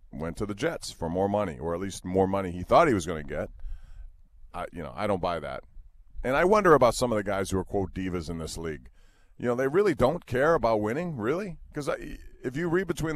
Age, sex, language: 40-59, male, English